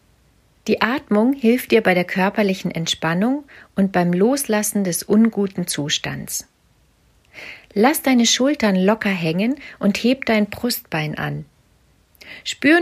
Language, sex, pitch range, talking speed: German, female, 180-230 Hz, 115 wpm